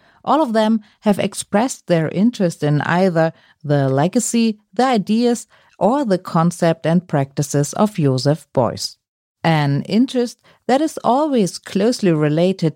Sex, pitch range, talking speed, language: female, 160-220 Hz, 130 wpm, German